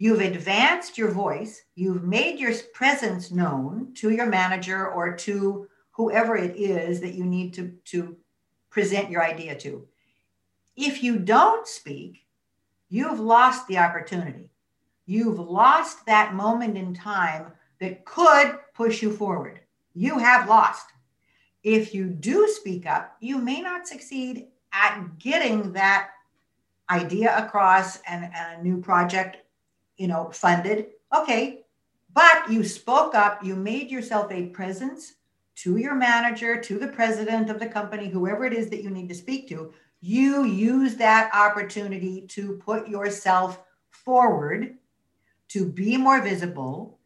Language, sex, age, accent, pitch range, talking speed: English, female, 60-79, American, 180-230 Hz, 140 wpm